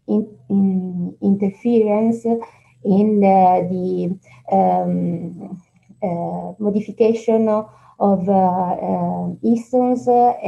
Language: English